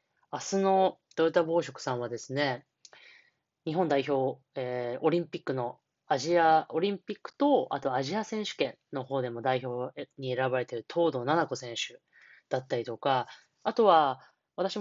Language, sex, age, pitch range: Japanese, female, 20-39, 130-180 Hz